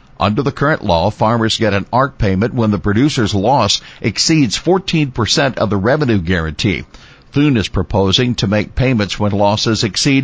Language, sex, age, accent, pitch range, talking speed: English, male, 60-79, American, 95-120 Hz, 165 wpm